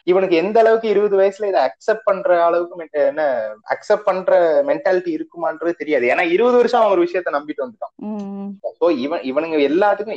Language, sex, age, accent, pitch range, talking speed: Tamil, male, 30-49, native, 175-260 Hz, 85 wpm